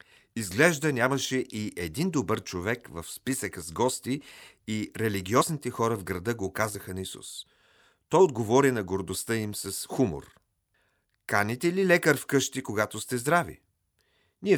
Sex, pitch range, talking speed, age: male, 100-130 Hz, 145 wpm, 40-59